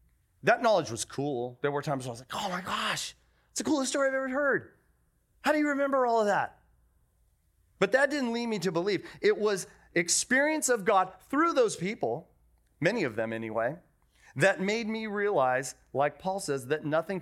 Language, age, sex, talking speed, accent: English, 30-49, male, 195 wpm, American